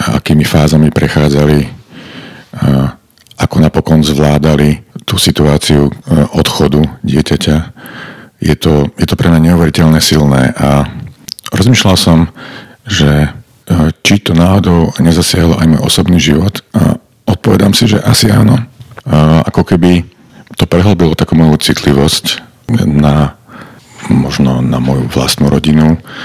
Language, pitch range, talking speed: Slovak, 75-90 Hz, 120 wpm